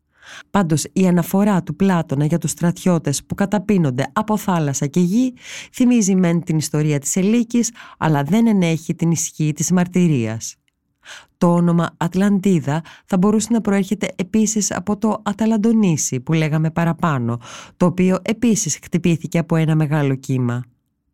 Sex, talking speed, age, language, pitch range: female, 140 wpm, 20-39, Greek, 150-200 Hz